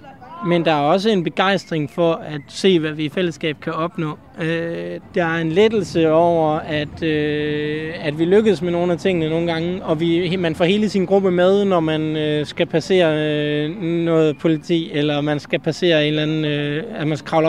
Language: Danish